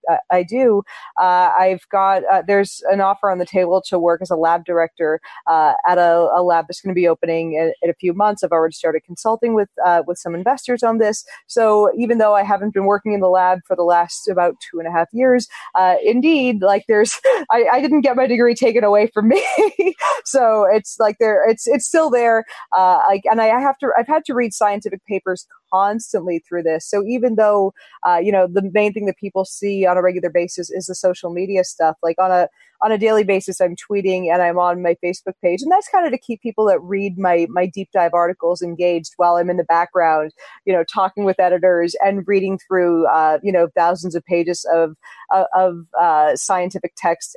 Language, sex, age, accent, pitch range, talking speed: English, female, 20-39, American, 175-215 Hz, 220 wpm